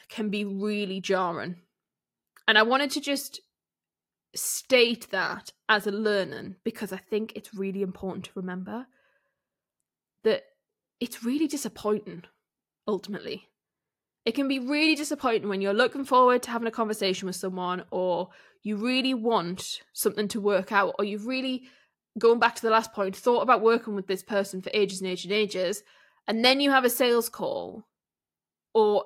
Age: 10-29